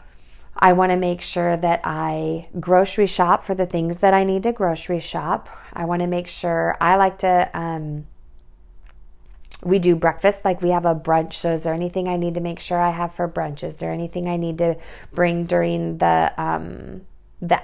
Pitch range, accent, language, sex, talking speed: 160-190 Hz, American, English, female, 200 wpm